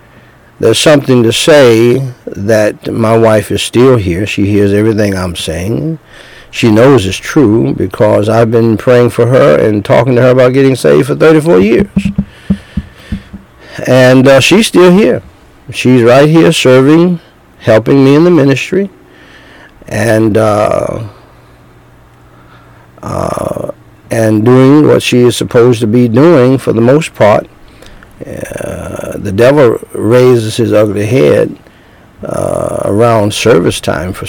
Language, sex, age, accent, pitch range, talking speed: English, male, 60-79, American, 105-130 Hz, 135 wpm